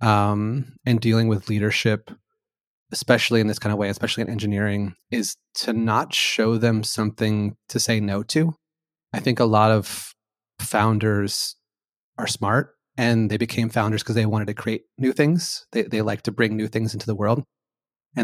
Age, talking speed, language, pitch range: 30-49, 180 wpm, English, 105-120 Hz